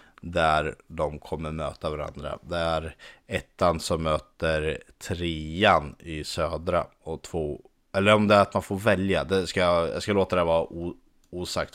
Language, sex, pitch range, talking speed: Swedish, male, 80-95 Hz, 160 wpm